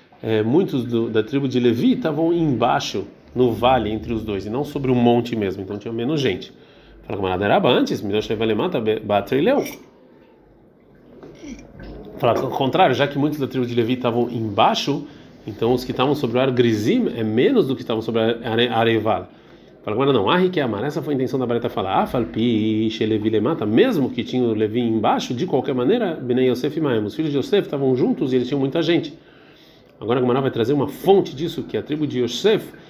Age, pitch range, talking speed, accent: 40-59, 115-140 Hz, 175 wpm, Brazilian